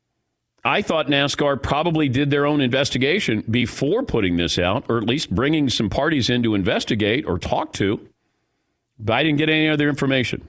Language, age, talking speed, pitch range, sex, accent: English, 50-69, 175 wpm, 120-160 Hz, male, American